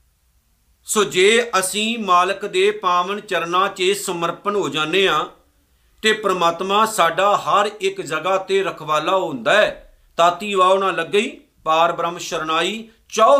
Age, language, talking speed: 50-69, Punjabi, 130 wpm